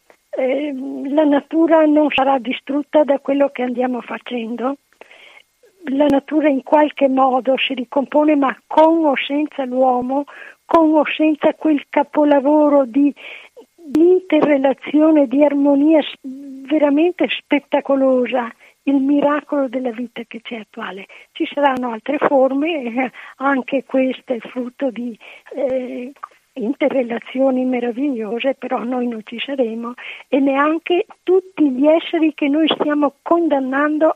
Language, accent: Italian, native